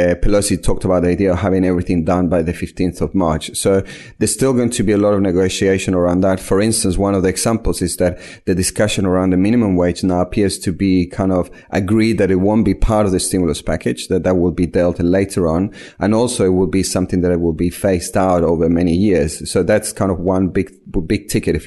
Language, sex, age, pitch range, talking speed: English, male, 30-49, 90-100 Hz, 240 wpm